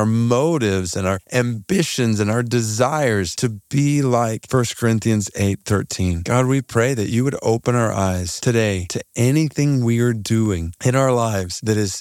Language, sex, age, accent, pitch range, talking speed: English, male, 40-59, American, 100-130 Hz, 175 wpm